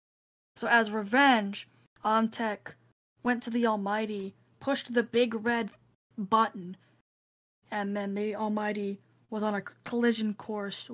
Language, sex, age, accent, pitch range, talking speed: English, female, 10-29, American, 200-235 Hz, 120 wpm